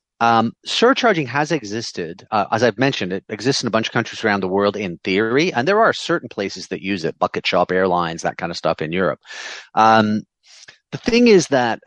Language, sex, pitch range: English, male, 100-135 Hz